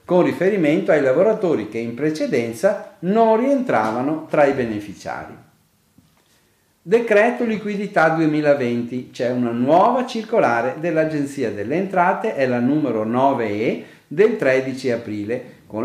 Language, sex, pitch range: Italian, male, 120-170 Hz